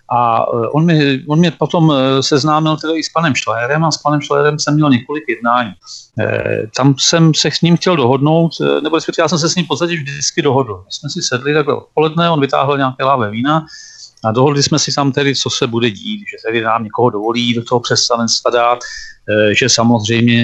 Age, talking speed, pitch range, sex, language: 40-59, 210 wpm, 125-155 Hz, male, Czech